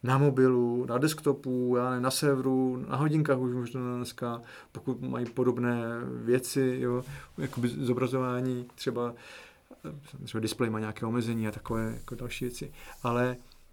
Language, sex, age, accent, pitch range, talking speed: Czech, male, 30-49, native, 120-140 Hz, 135 wpm